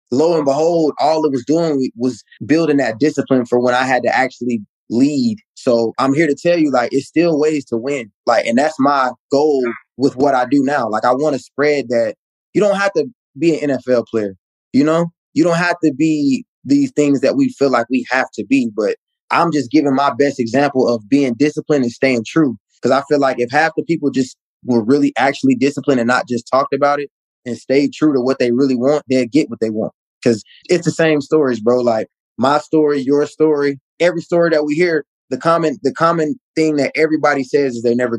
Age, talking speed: 20-39, 225 wpm